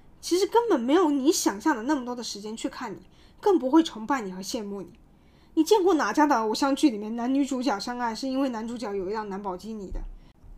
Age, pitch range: 20-39, 200-325 Hz